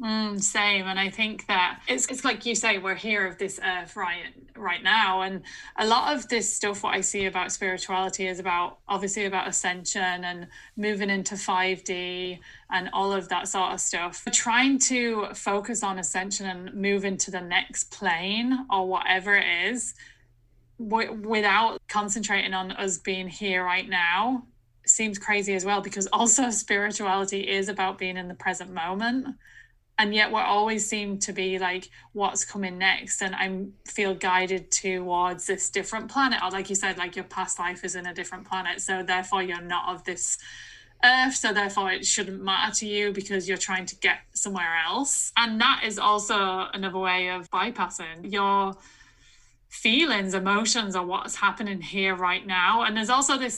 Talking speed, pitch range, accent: 175 wpm, 185-210 Hz, British